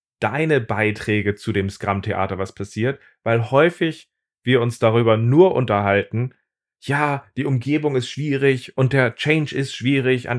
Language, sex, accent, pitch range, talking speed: German, male, German, 110-135 Hz, 145 wpm